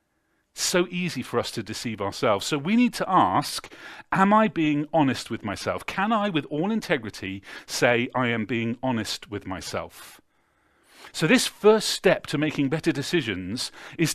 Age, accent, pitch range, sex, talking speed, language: 40-59, British, 120-190 Hz, male, 170 wpm, English